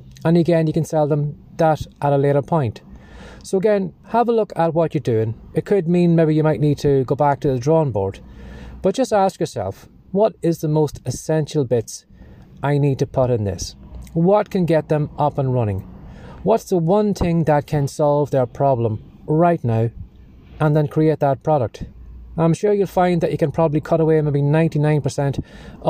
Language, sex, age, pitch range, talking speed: English, male, 30-49, 130-165 Hz, 195 wpm